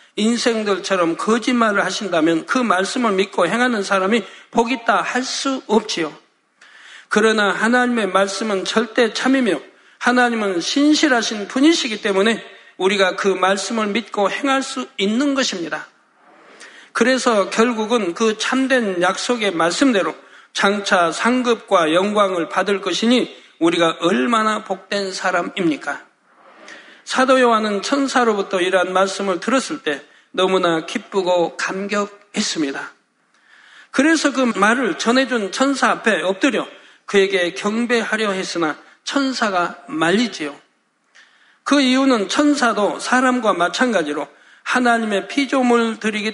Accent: native